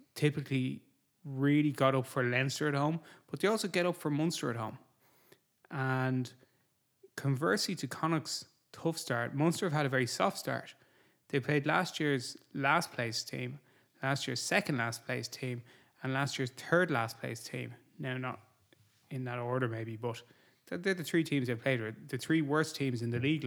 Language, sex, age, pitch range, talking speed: English, male, 20-39, 125-150 Hz, 180 wpm